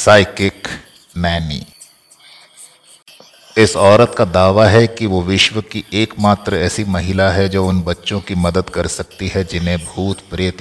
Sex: male